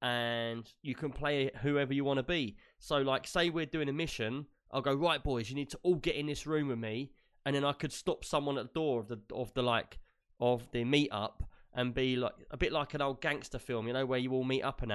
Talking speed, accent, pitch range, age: 260 wpm, British, 120-150 Hz, 20-39